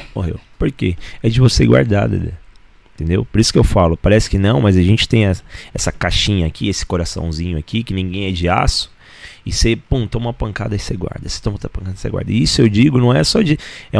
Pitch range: 95-125 Hz